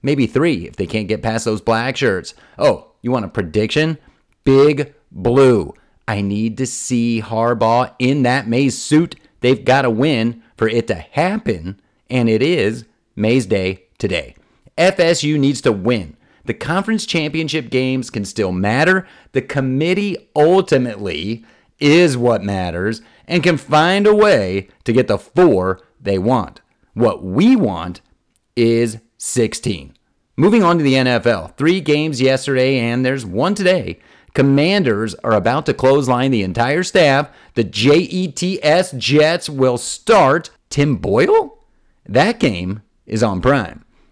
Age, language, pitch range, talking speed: 40-59, English, 115-160 Hz, 145 wpm